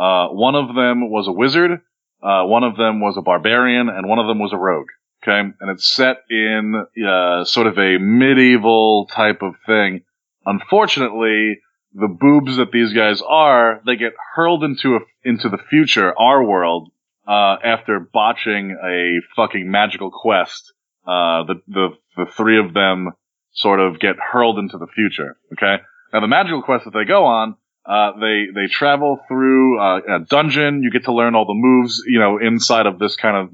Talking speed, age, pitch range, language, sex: 185 wpm, 30-49, 100-120 Hz, English, male